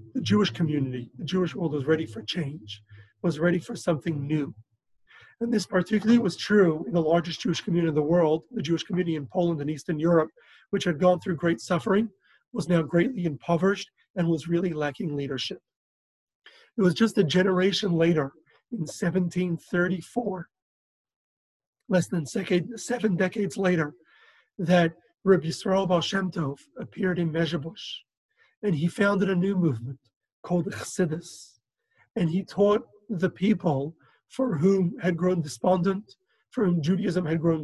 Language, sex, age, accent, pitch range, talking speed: English, male, 30-49, American, 160-190 Hz, 155 wpm